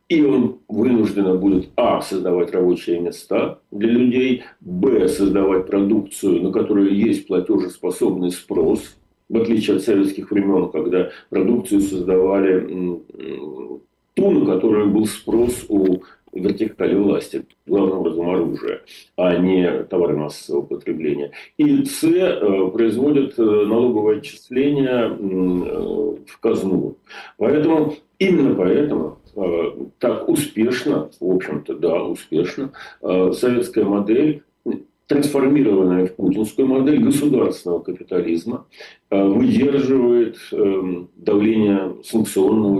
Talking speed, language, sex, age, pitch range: 95 wpm, Russian, male, 40-59, 95-130 Hz